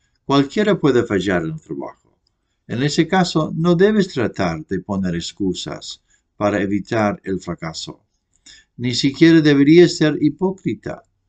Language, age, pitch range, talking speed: English, 60-79, 105-155 Hz, 130 wpm